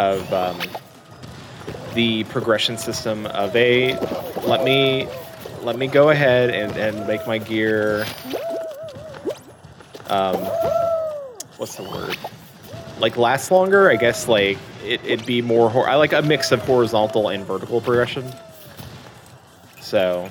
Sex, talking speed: male, 125 wpm